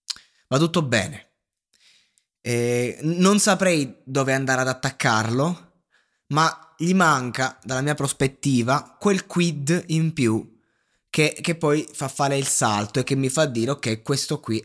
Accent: native